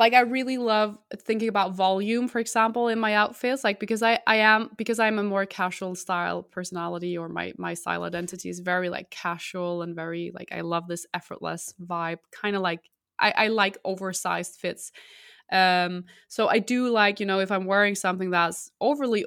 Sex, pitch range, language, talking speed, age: female, 175-210 Hz, English, 195 wpm, 20-39